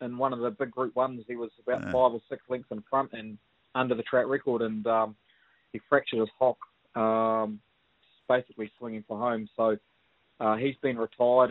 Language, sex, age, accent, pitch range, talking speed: English, male, 20-39, Australian, 105-120 Hz, 195 wpm